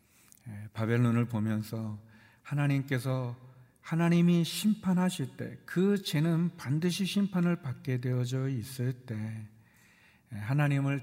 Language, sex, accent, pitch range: Korean, male, native, 115-150 Hz